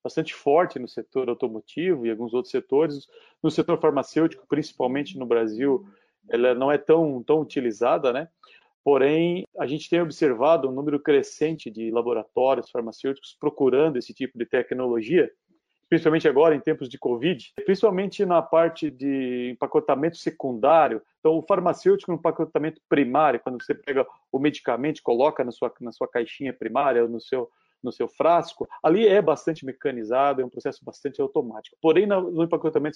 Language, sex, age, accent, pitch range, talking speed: Portuguese, male, 40-59, Brazilian, 135-170 Hz, 160 wpm